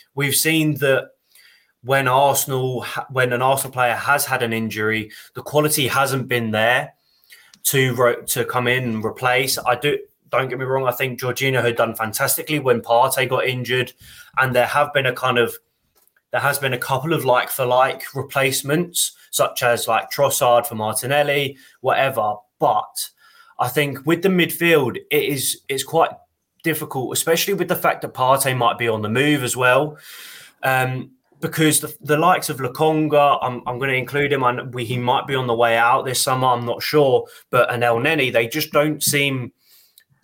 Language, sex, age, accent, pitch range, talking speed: English, male, 20-39, British, 125-145 Hz, 185 wpm